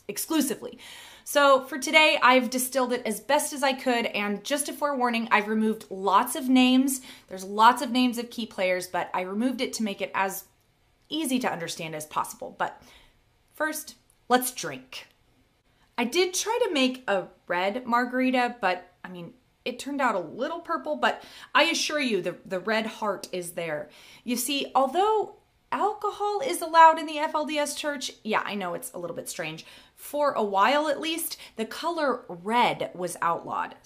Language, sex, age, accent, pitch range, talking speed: English, female, 30-49, American, 190-280 Hz, 175 wpm